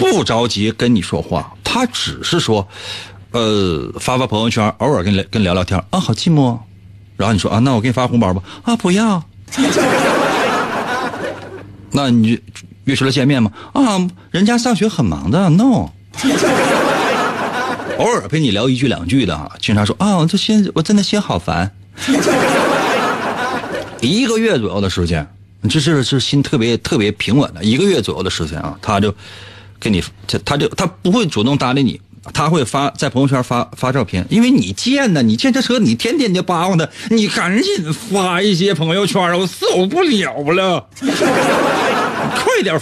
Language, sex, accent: Chinese, male, native